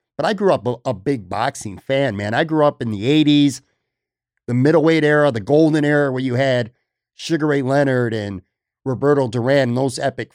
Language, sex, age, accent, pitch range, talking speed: English, male, 50-69, American, 125-155 Hz, 190 wpm